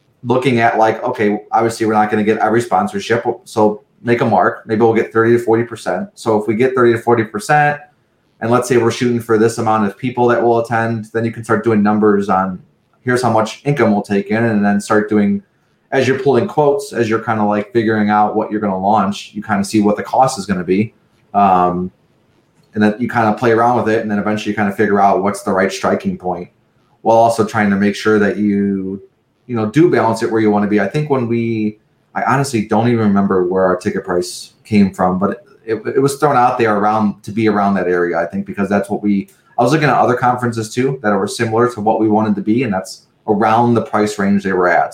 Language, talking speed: English, 250 wpm